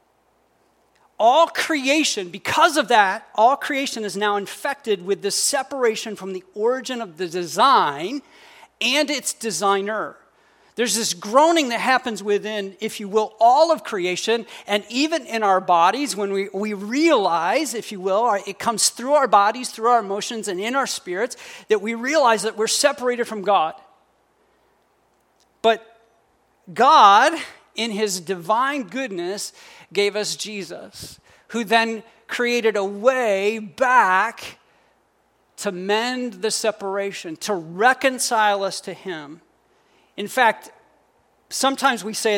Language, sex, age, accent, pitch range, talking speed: English, male, 40-59, American, 200-260 Hz, 135 wpm